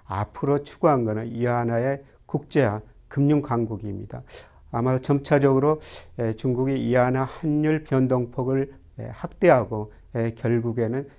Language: Korean